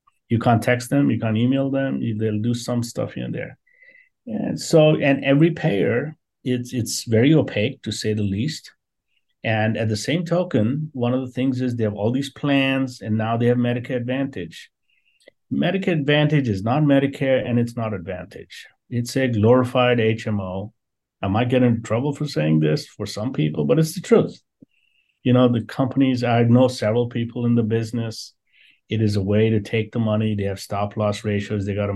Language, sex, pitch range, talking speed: English, male, 105-130 Hz, 190 wpm